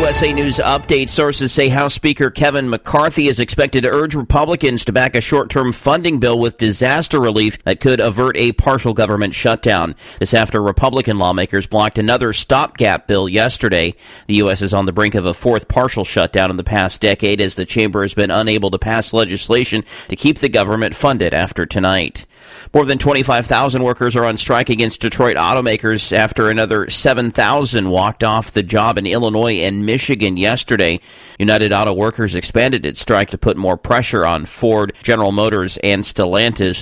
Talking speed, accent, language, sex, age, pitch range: 175 wpm, American, English, male, 40-59, 105-130 Hz